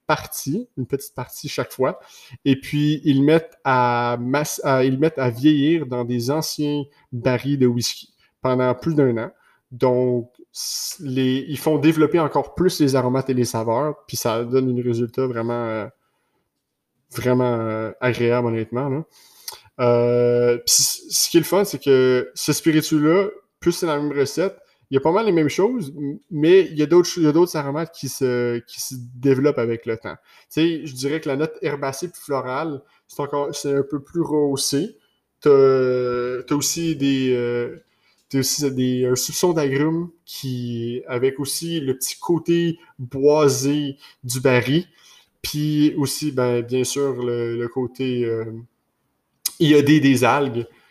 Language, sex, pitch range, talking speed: French, male, 125-155 Hz, 155 wpm